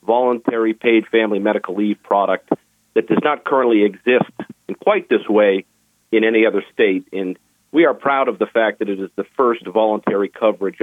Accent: American